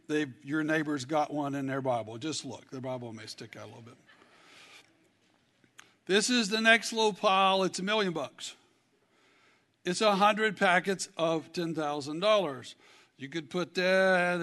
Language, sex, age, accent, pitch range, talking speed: English, male, 60-79, American, 160-220 Hz, 155 wpm